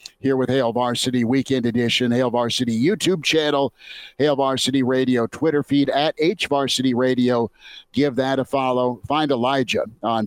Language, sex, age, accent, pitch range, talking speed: English, male, 50-69, American, 125-145 Hz, 145 wpm